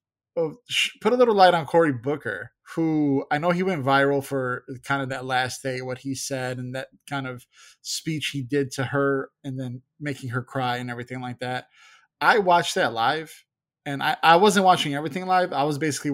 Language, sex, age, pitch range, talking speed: English, male, 20-39, 130-150 Hz, 200 wpm